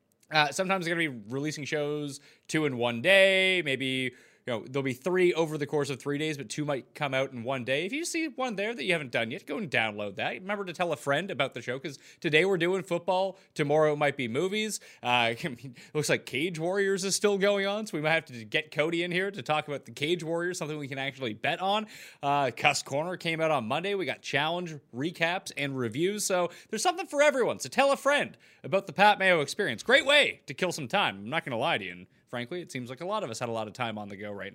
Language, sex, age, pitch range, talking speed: English, male, 30-49, 130-180 Hz, 265 wpm